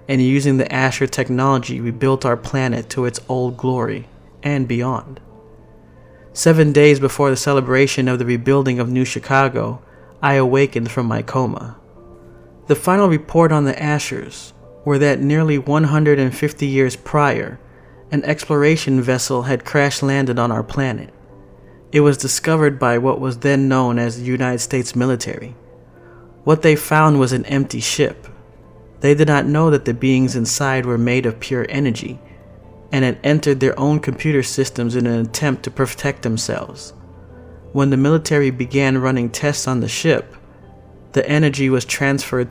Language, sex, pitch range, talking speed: English, male, 125-140 Hz, 155 wpm